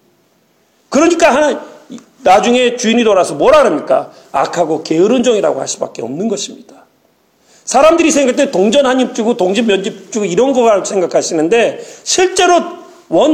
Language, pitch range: Korean, 200-330 Hz